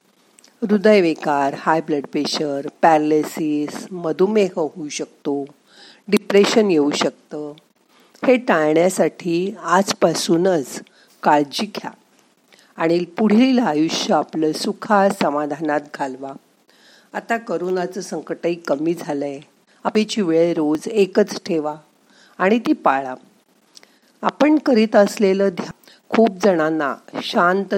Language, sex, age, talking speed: Marathi, female, 50-69, 95 wpm